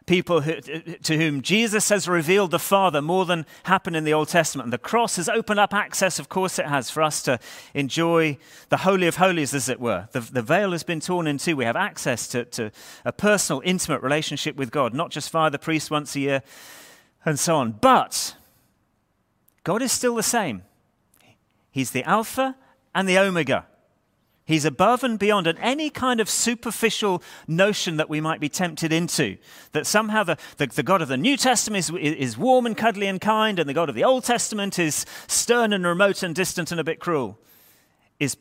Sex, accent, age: male, British, 30-49